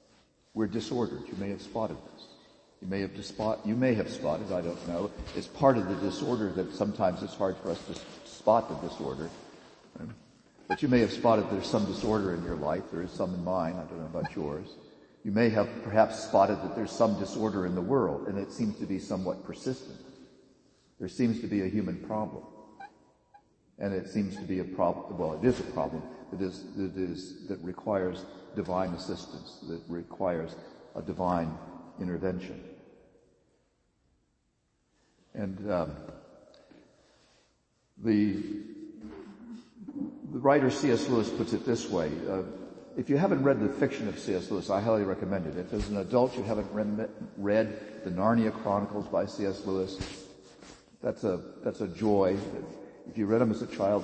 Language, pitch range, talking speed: English, 95-110 Hz, 175 wpm